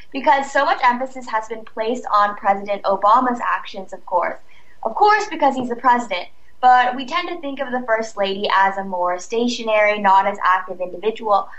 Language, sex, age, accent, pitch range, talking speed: English, female, 10-29, American, 200-255 Hz, 185 wpm